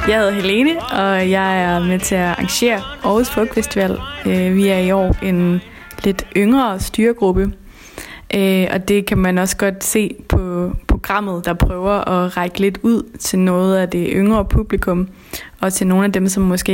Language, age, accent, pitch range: English, 20-39, Danish, 180-205 Hz